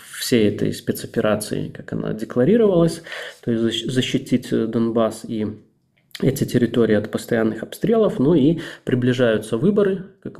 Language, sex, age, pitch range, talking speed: Russian, male, 20-39, 110-135 Hz, 120 wpm